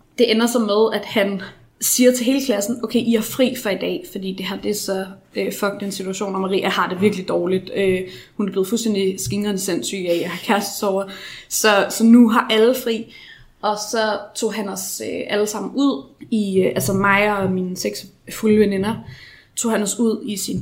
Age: 20-39